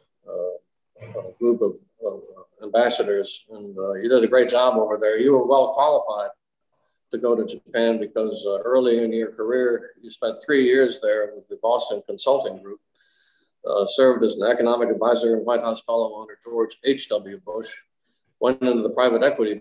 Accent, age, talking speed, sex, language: American, 50-69, 180 wpm, male, English